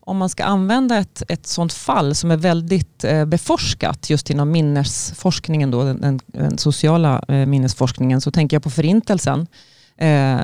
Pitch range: 135-160 Hz